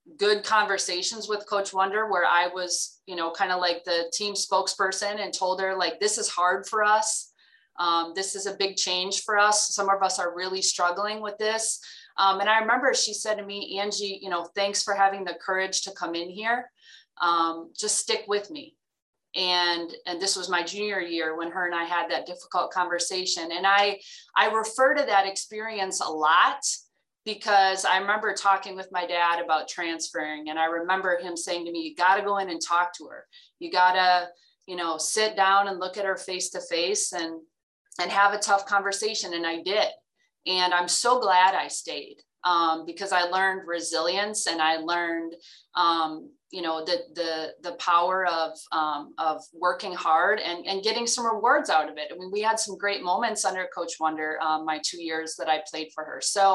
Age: 20-39